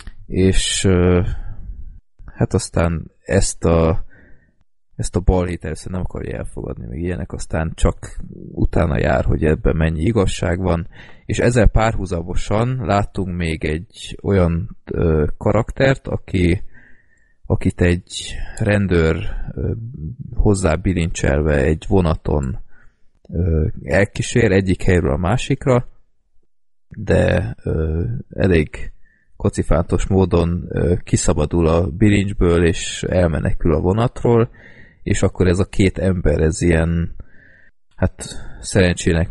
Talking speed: 110 wpm